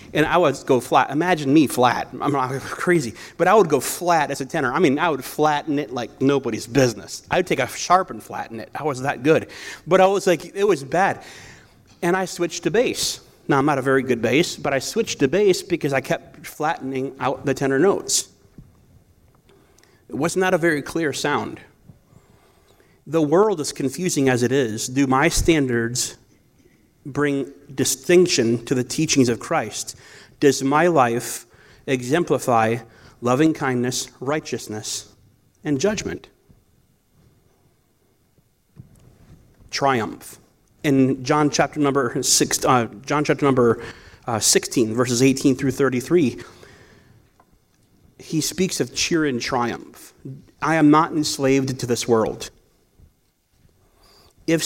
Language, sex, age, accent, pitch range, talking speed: English, male, 30-49, American, 125-160 Hz, 145 wpm